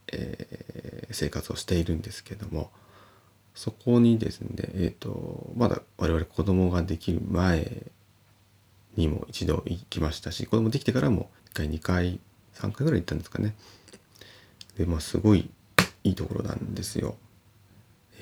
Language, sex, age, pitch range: Japanese, male, 30-49, 95-115 Hz